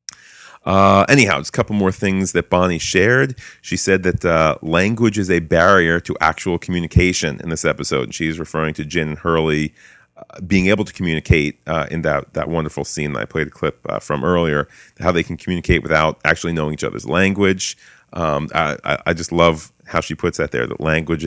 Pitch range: 80-95 Hz